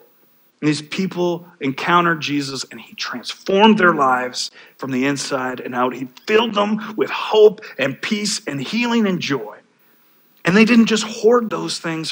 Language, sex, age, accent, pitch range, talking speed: English, male, 40-59, American, 135-180 Hz, 165 wpm